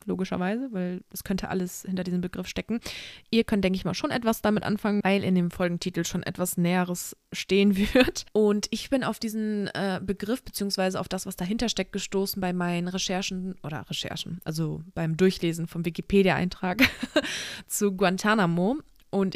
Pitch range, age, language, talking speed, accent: 180-210 Hz, 20-39, German, 165 wpm, German